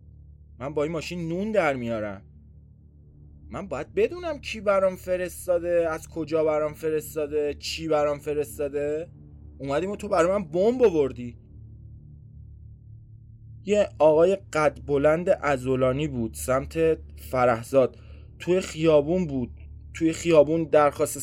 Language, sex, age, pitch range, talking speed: Persian, male, 20-39, 95-155 Hz, 115 wpm